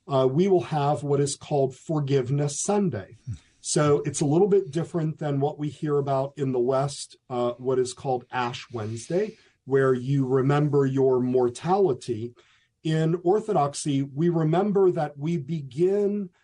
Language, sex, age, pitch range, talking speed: English, male, 40-59, 130-160 Hz, 150 wpm